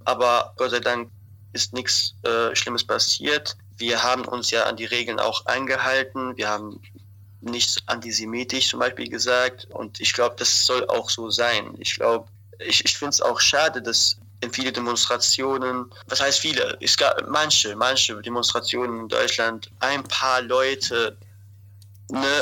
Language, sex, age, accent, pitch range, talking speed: German, male, 20-39, German, 110-130 Hz, 160 wpm